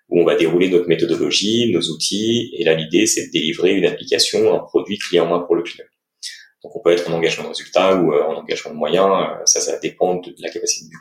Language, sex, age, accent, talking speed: French, male, 30-49, French, 235 wpm